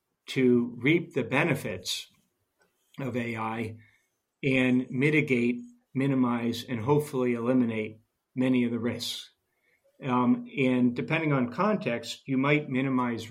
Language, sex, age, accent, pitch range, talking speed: English, male, 50-69, American, 120-135 Hz, 110 wpm